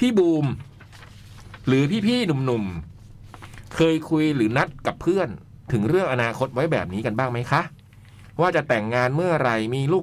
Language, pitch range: Thai, 110-165 Hz